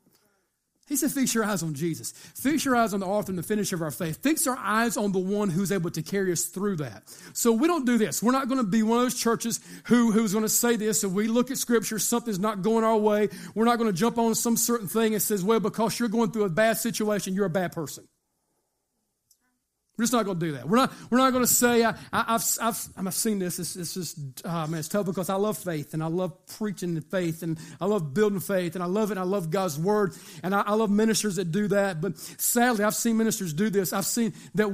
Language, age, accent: English, 40-59, American